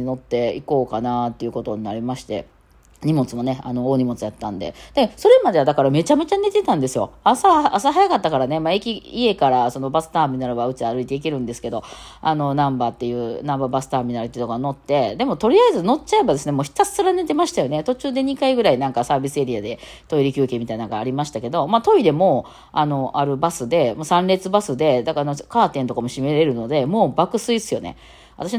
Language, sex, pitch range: Japanese, female, 135-225 Hz